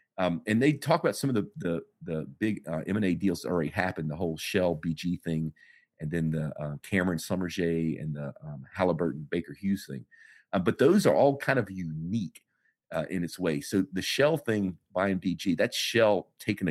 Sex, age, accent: male, 40-59, American